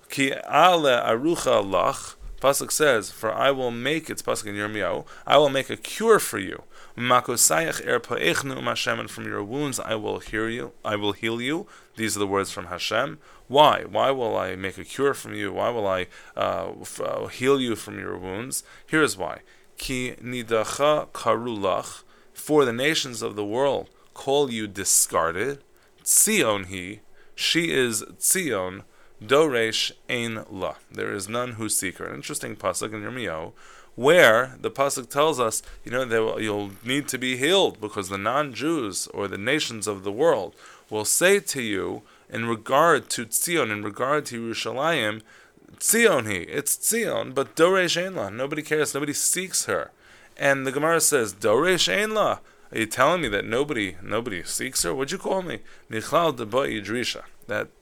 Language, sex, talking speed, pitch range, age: English, male, 175 wpm, 105-140 Hz, 20-39